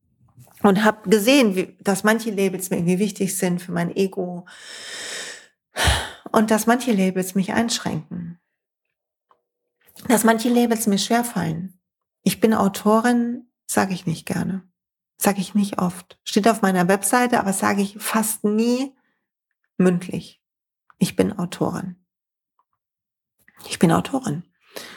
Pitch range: 190-240 Hz